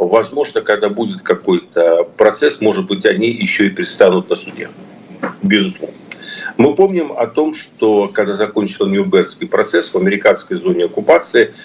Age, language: 50-69, Russian